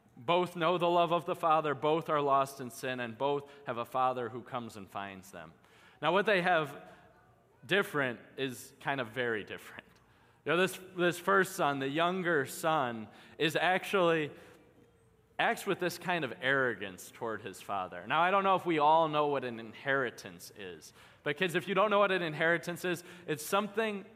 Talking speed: 185 wpm